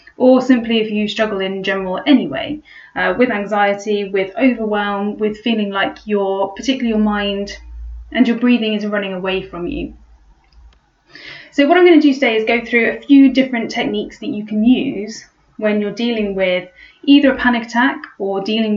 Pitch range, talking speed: 200-260 Hz, 175 wpm